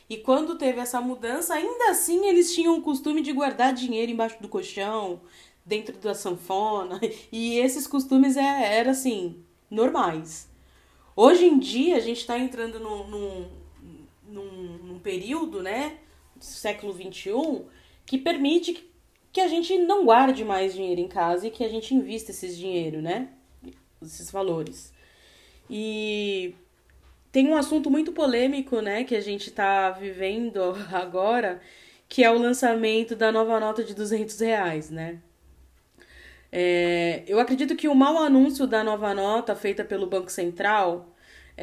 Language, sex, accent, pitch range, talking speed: Portuguese, female, Brazilian, 195-260 Hz, 145 wpm